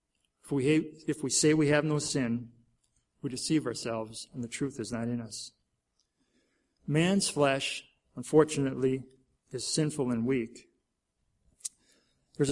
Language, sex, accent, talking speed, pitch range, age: English, male, American, 125 wpm, 120-150 Hz, 40-59